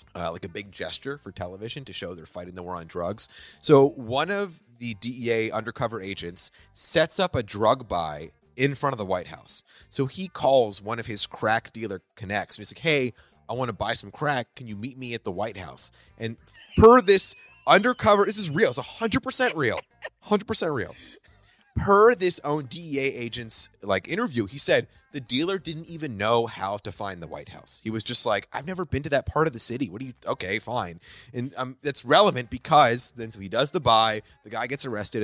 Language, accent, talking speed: English, American, 220 wpm